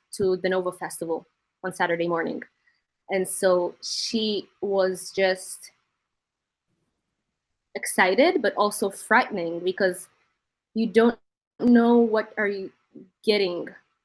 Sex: female